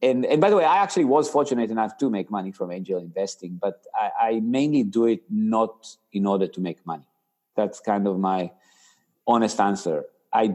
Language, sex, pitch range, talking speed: English, male, 100-125 Hz, 200 wpm